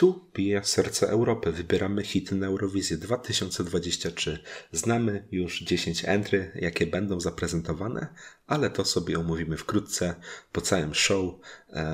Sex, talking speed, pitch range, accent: male, 115 wpm, 85-100 Hz, native